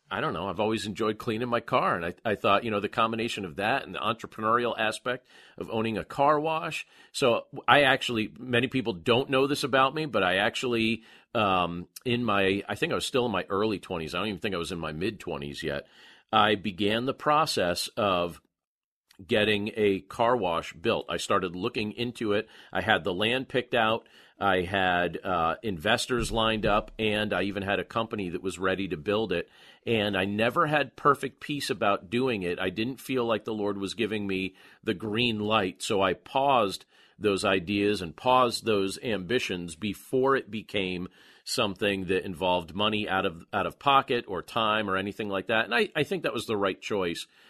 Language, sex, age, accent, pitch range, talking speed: English, male, 40-59, American, 95-120 Hz, 200 wpm